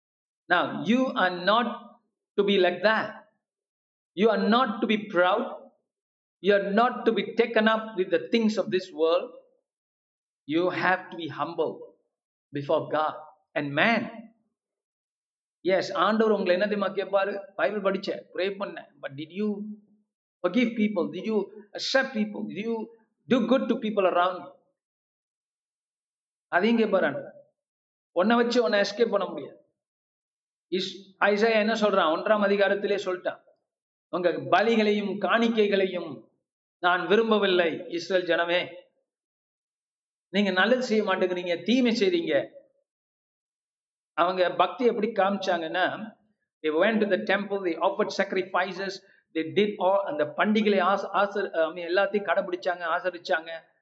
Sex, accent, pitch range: male, native, 180-220 Hz